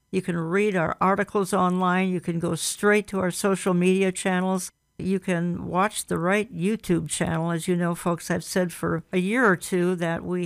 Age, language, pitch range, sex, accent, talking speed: 60-79, English, 175-205 Hz, female, American, 200 wpm